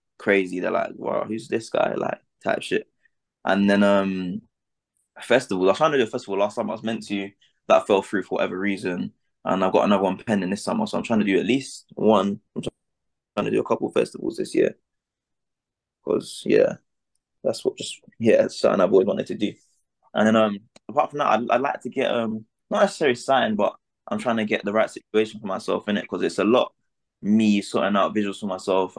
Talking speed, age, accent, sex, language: 225 wpm, 20-39, British, male, English